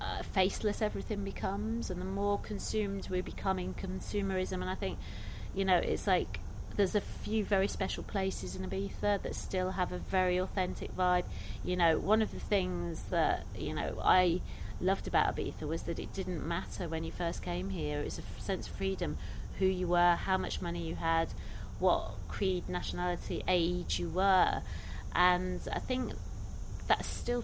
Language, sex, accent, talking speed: English, female, British, 180 wpm